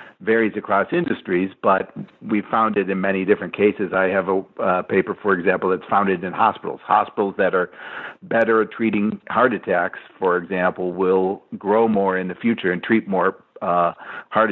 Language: English